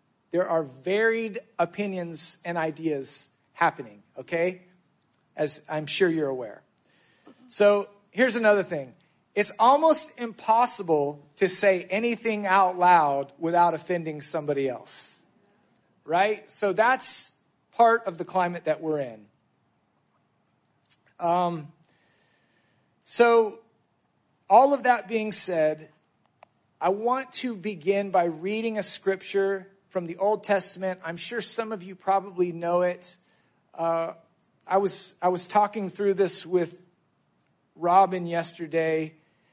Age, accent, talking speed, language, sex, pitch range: 40-59, American, 115 wpm, English, male, 165-210 Hz